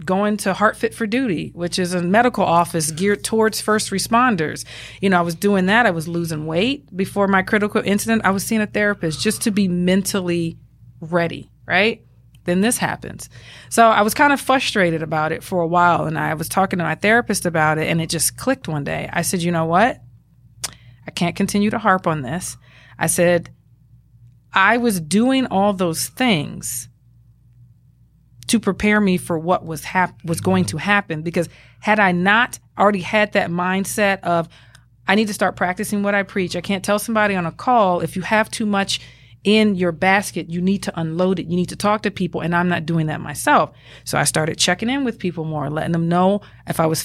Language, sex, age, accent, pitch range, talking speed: English, female, 30-49, American, 160-205 Hz, 205 wpm